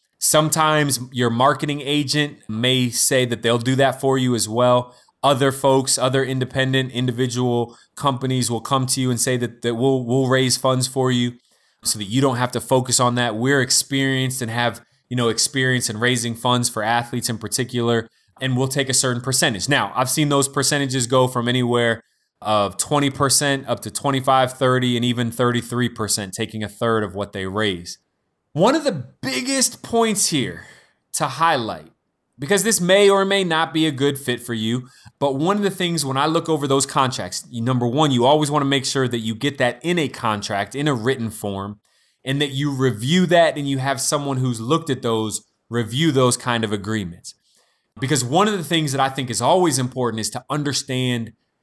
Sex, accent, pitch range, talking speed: male, American, 120-140 Hz, 195 wpm